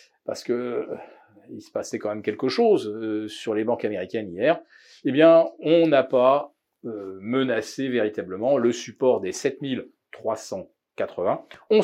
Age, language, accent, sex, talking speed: 40-59, French, French, male, 130 wpm